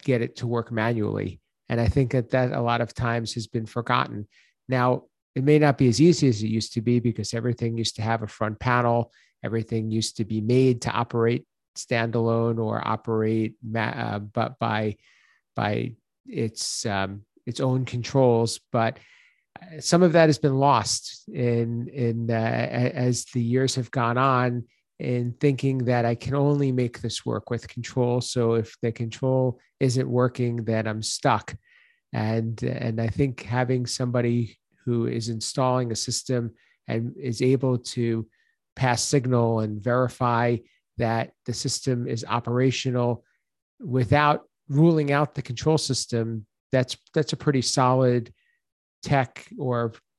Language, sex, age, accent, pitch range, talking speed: English, male, 50-69, American, 115-130 Hz, 155 wpm